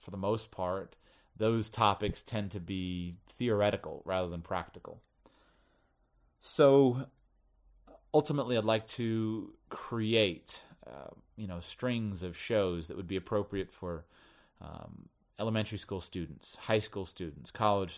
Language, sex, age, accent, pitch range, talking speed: English, male, 30-49, American, 85-110 Hz, 125 wpm